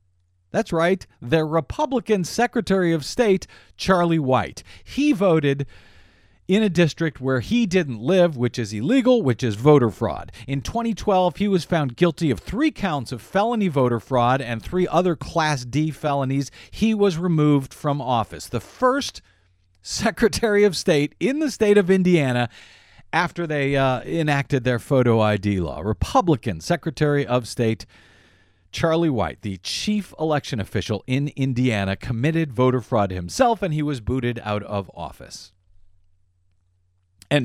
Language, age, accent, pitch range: English, 50-69, American, 110-180 Hz